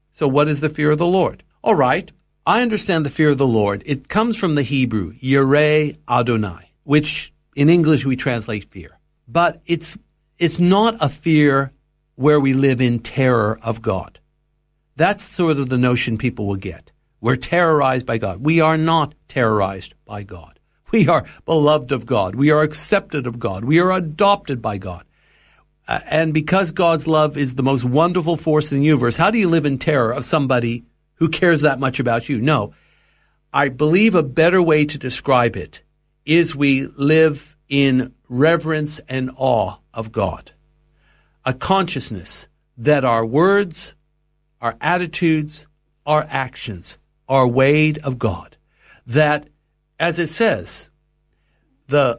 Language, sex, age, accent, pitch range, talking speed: English, male, 60-79, American, 125-160 Hz, 160 wpm